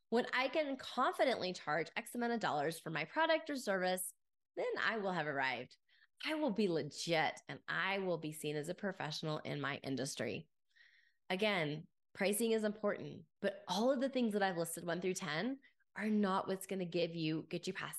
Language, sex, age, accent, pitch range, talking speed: English, female, 20-39, American, 170-235 Hz, 195 wpm